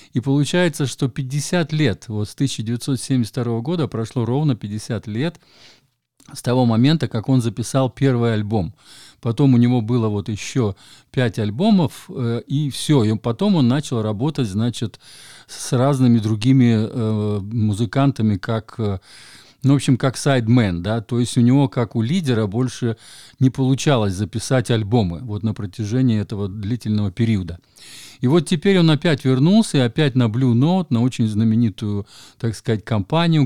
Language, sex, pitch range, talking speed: Russian, male, 110-135 Hz, 150 wpm